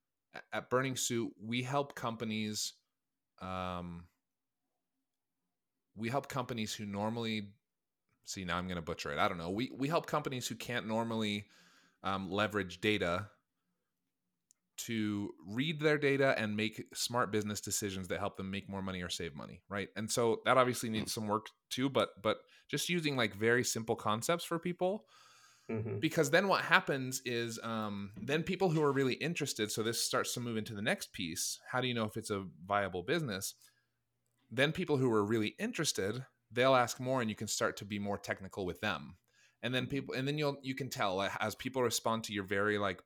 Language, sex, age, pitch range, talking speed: English, male, 30-49, 105-135 Hz, 190 wpm